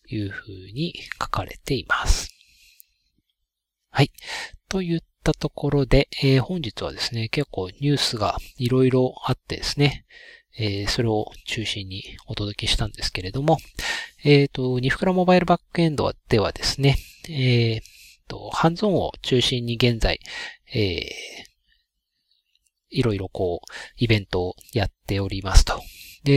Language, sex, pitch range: Japanese, male, 110-145 Hz